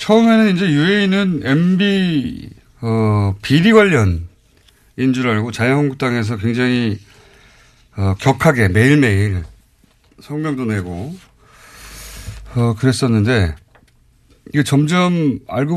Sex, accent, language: male, native, Korean